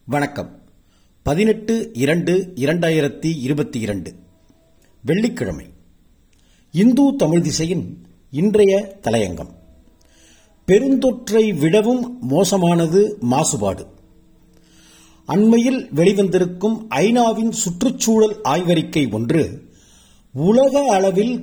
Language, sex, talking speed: Tamil, male, 60 wpm